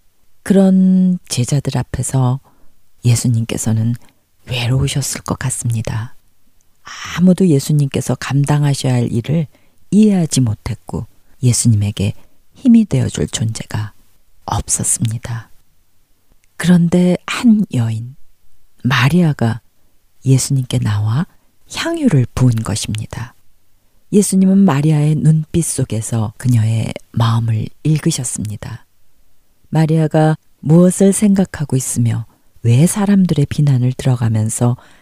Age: 40-59